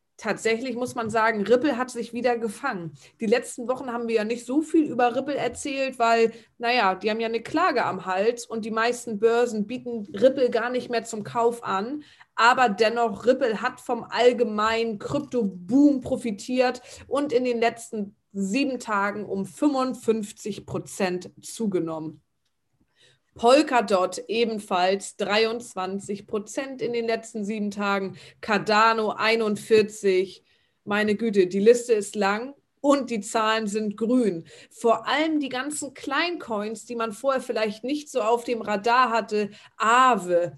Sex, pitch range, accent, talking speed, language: female, 205-245 Hz, German, 145 wpm, German